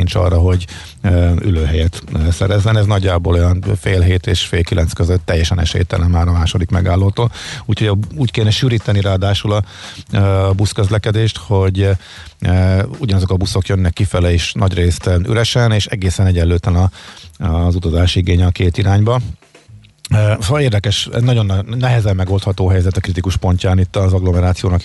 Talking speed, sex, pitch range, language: 140 wpm, male, 90-110 Hz, Hungarian